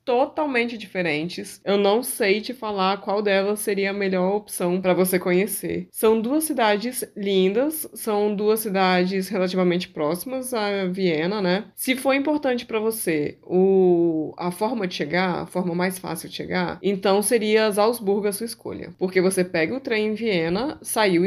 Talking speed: 165 wpm